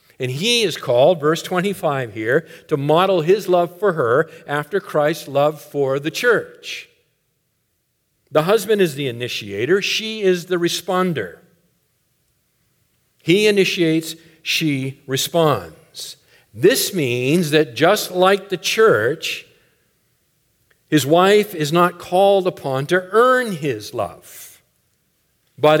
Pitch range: 135-185 Hz